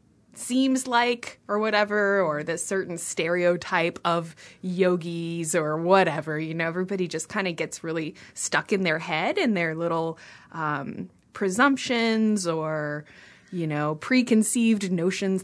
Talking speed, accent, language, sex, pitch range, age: 130 wpm, American, English, female, 170-225 Hz, 20-39